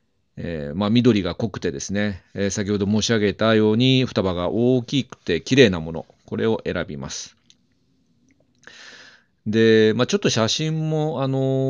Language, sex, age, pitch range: Japanese, male, 40-59, 90-125 Hz